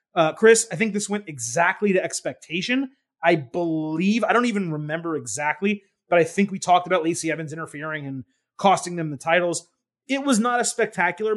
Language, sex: English, male